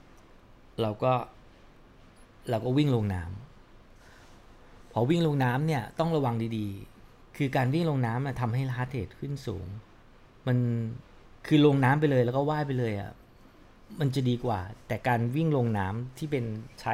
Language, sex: English, male